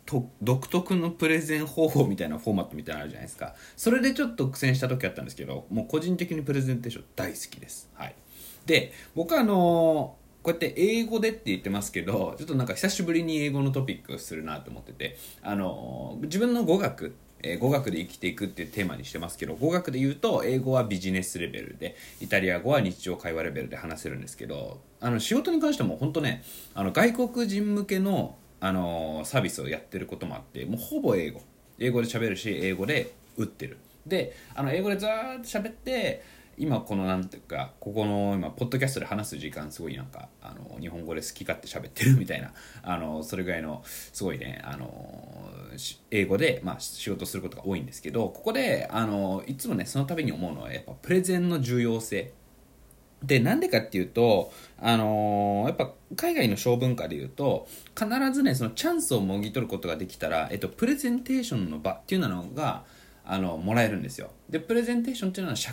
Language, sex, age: Japanese, male, 20-39